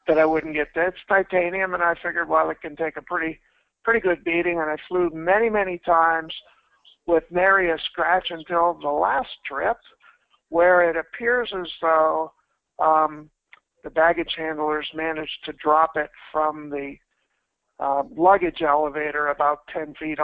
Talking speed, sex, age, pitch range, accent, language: 160 wpm, male, 50-69, 155-180 Hz, American, English